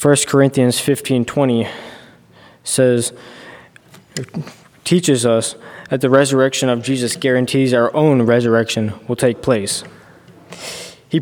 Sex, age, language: male, 20-39, English